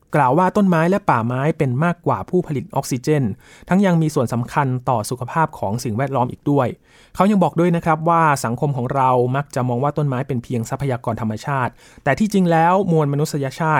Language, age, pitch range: Thai, 20-39, 120-160 Hz